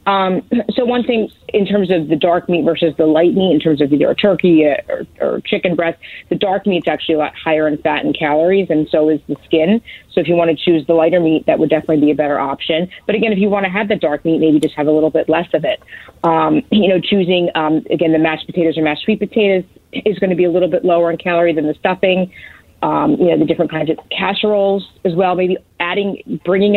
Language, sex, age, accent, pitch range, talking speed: English, female, 30-49, American, 155-185 Hz, 255 wpm